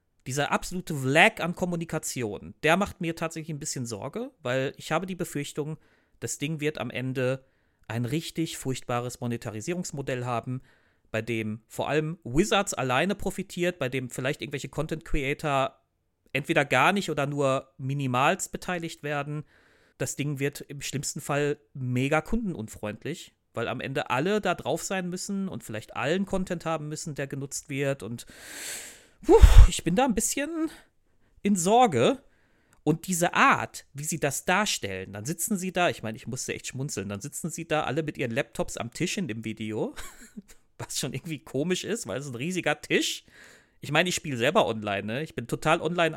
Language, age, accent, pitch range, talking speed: German, 40-59, German, 125-170 Hz, 170 wpm